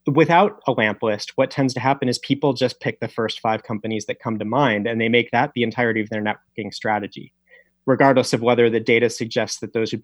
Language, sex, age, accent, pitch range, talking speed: English, male, 30-49, American, 115-145 Hz, 235 wpm